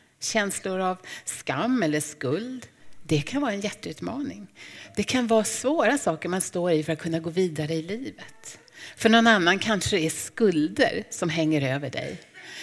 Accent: native